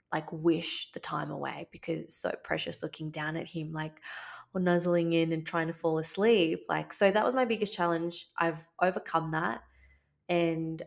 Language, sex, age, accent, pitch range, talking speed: English, female, 20-39, Australian, 160-175 Hz, 180 wpm